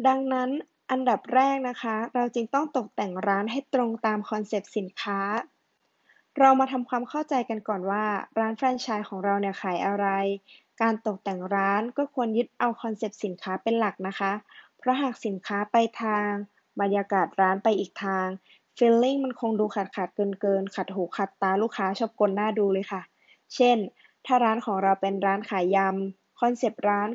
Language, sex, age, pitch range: Thai, female, 20-39, 195-235 Hz